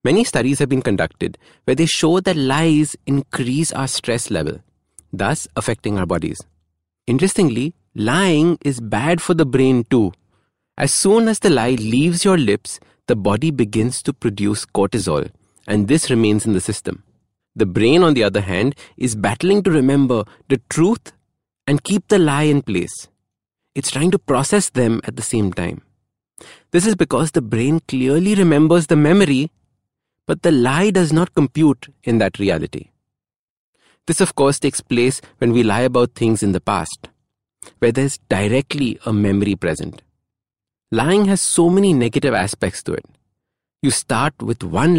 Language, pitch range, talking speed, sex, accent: English, 105-155 Hz, 165 wpm, male, Indian